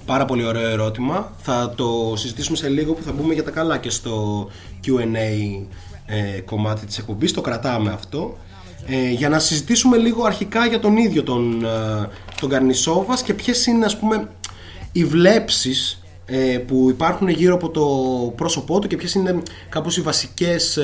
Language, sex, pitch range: Greek, male, 120-170 Hz